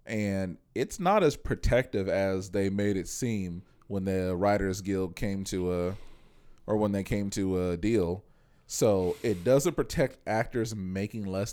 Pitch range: 95-115 Hz